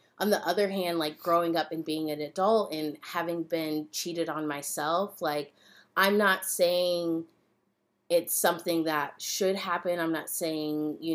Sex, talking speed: female, 160 wpm